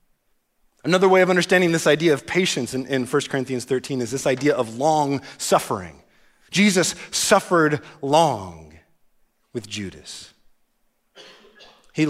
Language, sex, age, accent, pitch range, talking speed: English, male, 30-49, American, 130-190 Hz, 120 wpm